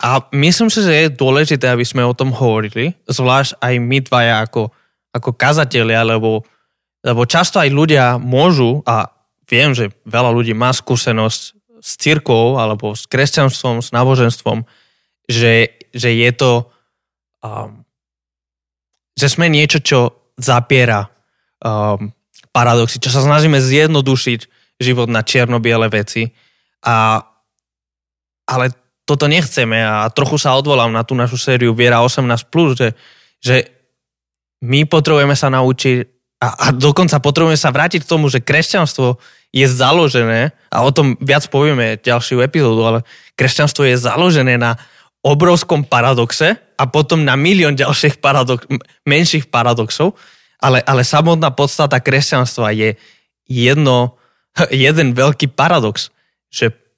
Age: 20-39